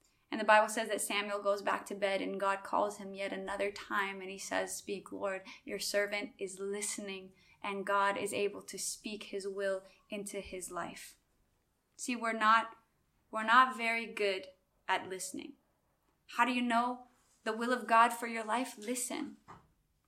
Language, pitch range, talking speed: English, 220-275 Hz, 170 wpm